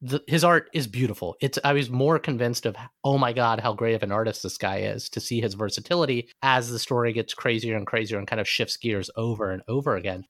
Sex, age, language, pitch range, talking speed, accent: male, 30-49, English, 115-150 Hz, 235 wpm, American